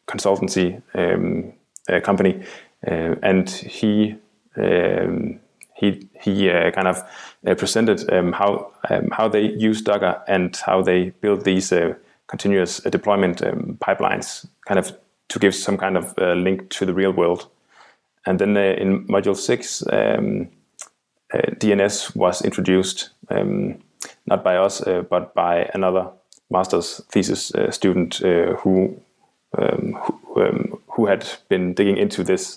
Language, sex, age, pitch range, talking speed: English, male, 20-39, 90-100 Hz, 145 wpm